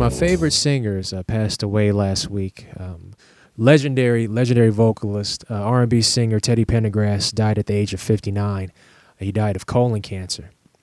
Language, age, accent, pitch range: English, 20-39, American, 100-120 Hz